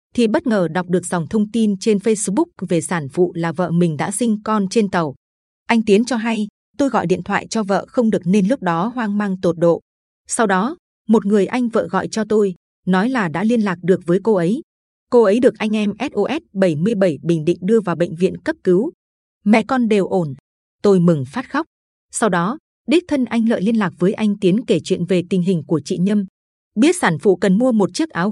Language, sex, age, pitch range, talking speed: Vietnamese, female, 20-39, 180-230 Hz, 230 wpm